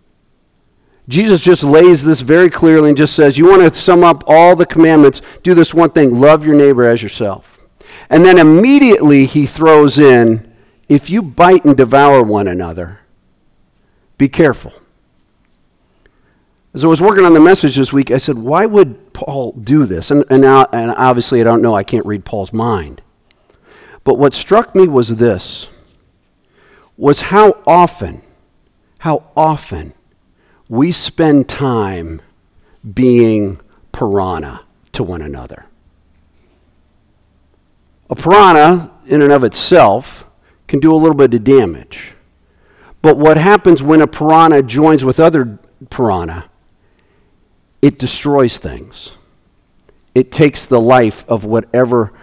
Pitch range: 105-160 Hz